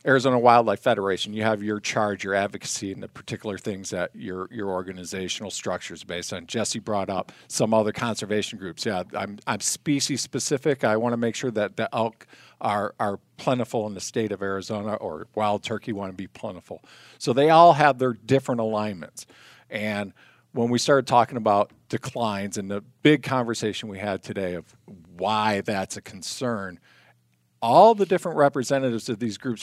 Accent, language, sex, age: American, English, male, 50-69